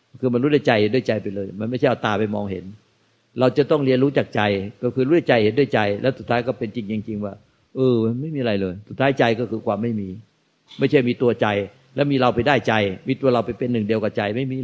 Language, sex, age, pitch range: Thai, male, 60-79, 115-140 Hz